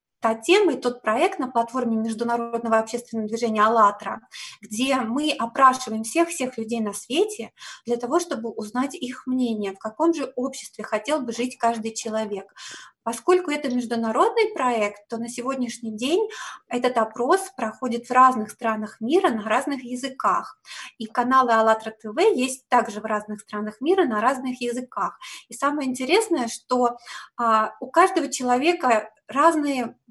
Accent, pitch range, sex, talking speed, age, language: native, 225-280 Hz, female, 145 wpm, 20-39, Russian